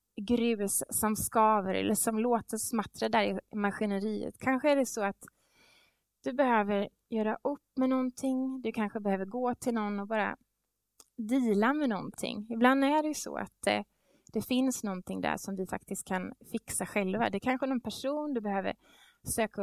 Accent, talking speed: Norwegian, 170 wpm